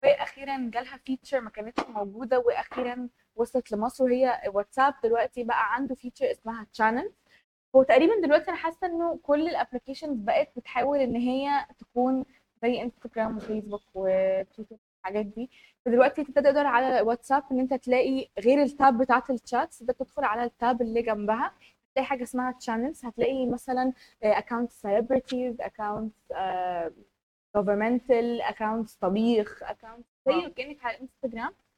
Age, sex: 20-39, female